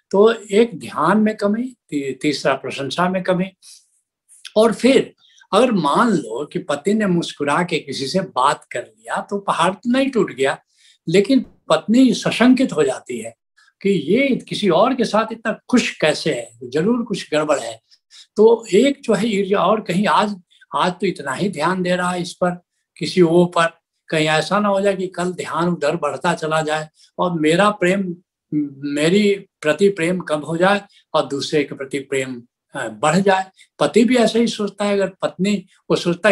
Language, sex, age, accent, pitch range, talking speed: Hindi, male, 70-89, native, 165-215 Hz, 180 wpm